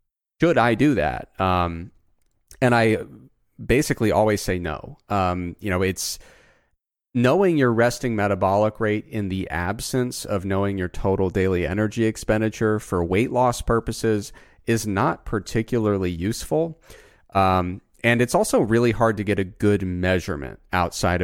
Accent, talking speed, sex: American, 140 wpm, male